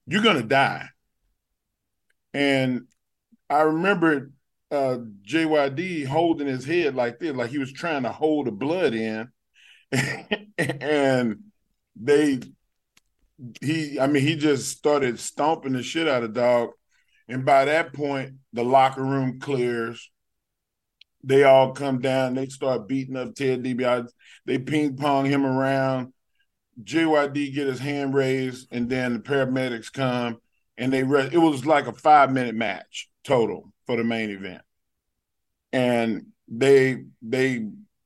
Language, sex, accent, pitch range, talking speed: English, male, American, 120-145 Hz, 140 wpm